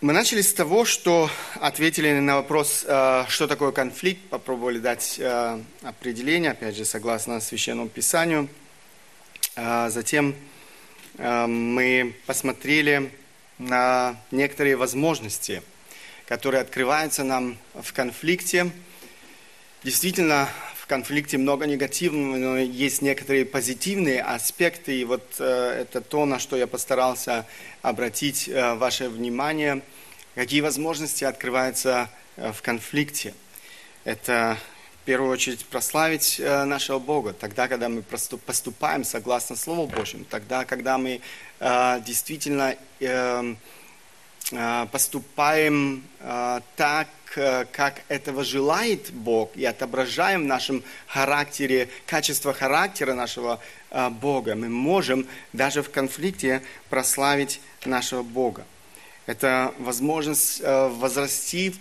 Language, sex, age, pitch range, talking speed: Russian, male, 30-49, 125-150 Hz, 95 wpm